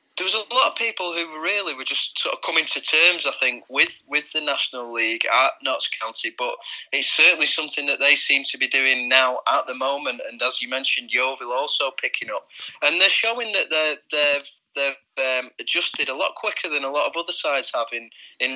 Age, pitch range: 20-39, 125-170 Hz